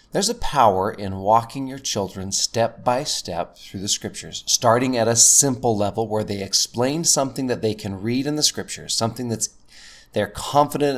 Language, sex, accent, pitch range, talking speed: English, male, American, 100-120 Hz, 180 wpm